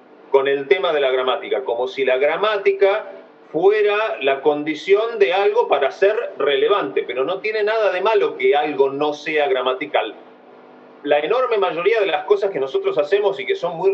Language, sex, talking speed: Spanish, male, 180 wpm